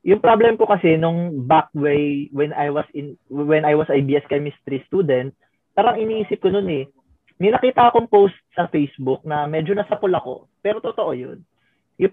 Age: 20-39